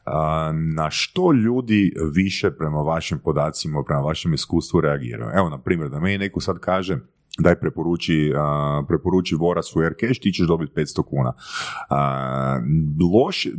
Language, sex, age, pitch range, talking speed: Croatian, male, 30-49, 85-130 Hz, 145 wpm